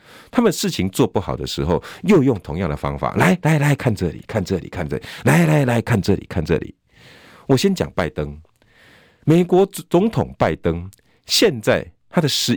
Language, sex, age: Chinese, male, 50-69